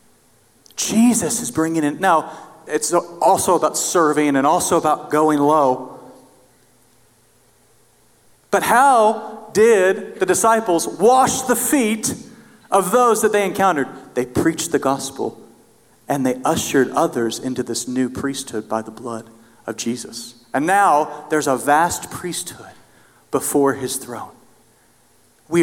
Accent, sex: American, male